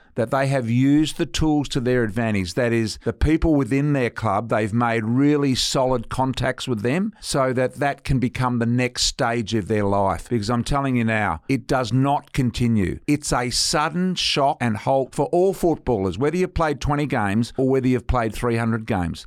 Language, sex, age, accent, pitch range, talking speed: English, male, 50-69, Australian, 110-140 Hz, 195 wpm